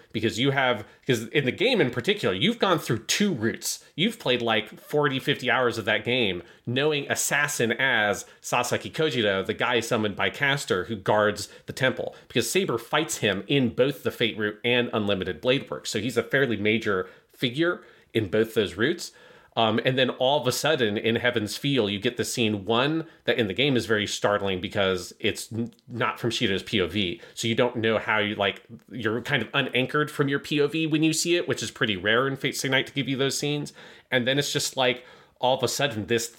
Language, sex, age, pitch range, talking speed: English, male, 30-49, 110-135 Hz, 215 wpm